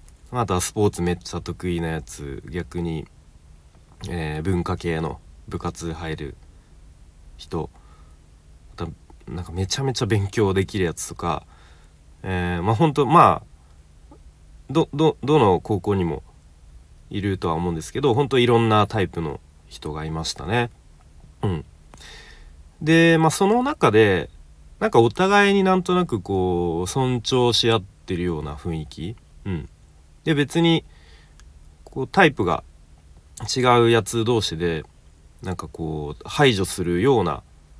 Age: 40-59